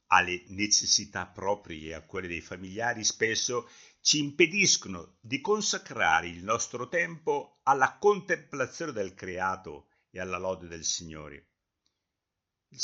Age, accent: 60-79, native